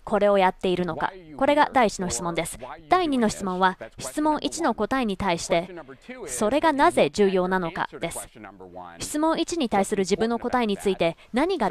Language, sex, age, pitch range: Japanese, female, 20-39, 180-255 Hz